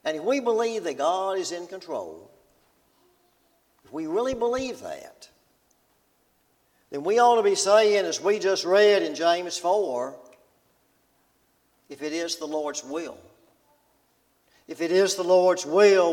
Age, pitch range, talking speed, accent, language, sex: 60-79, 155-210 Hz, 145 wpm, American, English, male